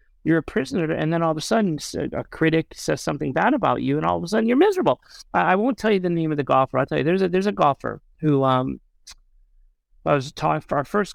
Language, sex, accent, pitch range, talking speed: English, male, American, 135-205 Hz, 265 wpm